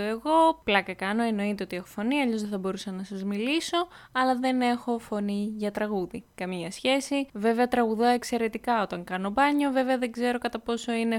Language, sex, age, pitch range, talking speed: Greek, female, 20-39, 200-250 Hz, 180 wpm